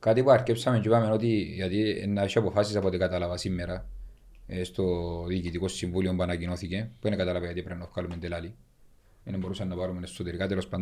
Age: 40-59